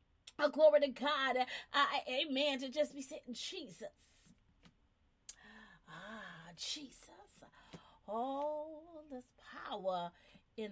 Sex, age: female, 30-49